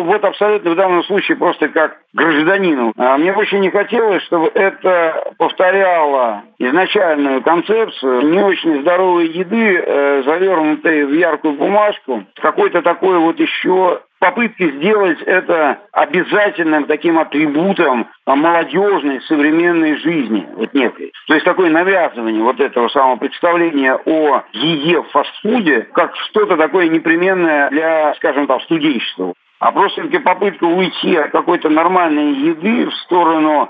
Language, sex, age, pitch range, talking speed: Russian, male, 60-79, 150-195 Hz, 125 wpm